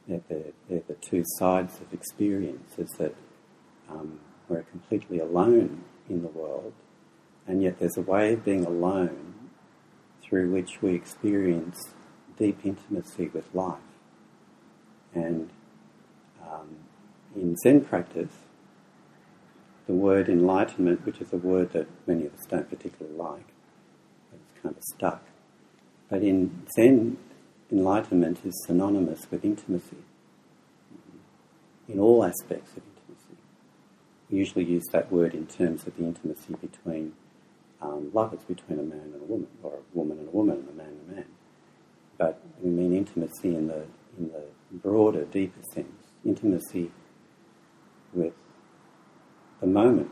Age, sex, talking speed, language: 60-79, male, 135 wpm, English